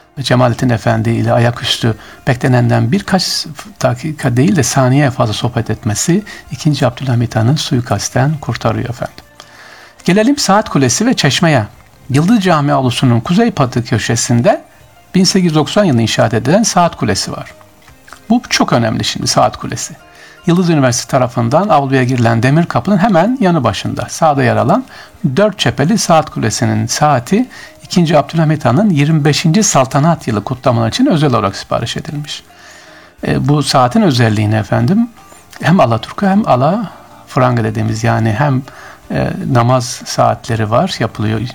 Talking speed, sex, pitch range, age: 135 wpm, male, 120-160 Hz, 60-79